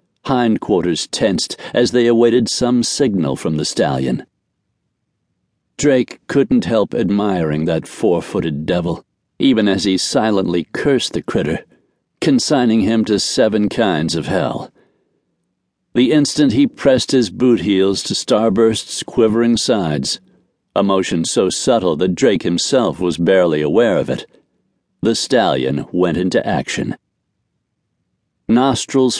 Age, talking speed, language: 60-79, 125 wpm, English